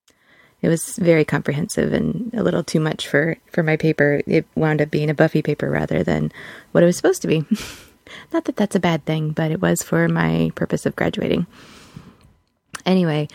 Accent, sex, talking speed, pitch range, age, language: American, female, 195 wpm, 160-215 Hz, 20-39, English